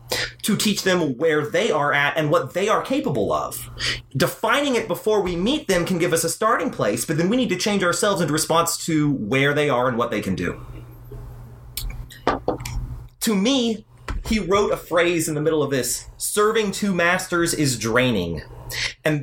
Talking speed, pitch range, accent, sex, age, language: 185 wpm, 125-190 Hz, American, male, 30-49, English